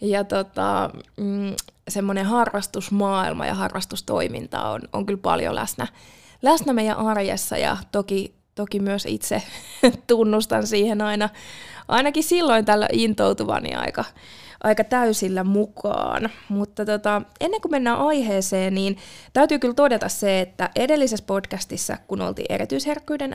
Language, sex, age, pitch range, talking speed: Finnish, female, 20-39, 195-240 Hz, 125 wpm